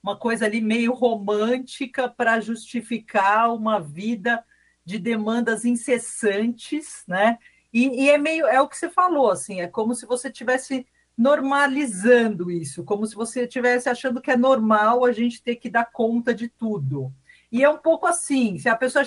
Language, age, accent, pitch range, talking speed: Portuguese, 40-59, Brazilian, 215-275 Hz, 165 wpm